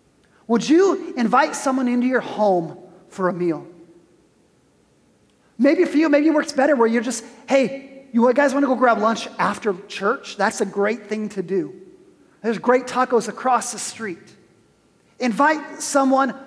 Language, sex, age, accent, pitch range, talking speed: English, male, 30-49, American, 215-280 Hz, 160 wpm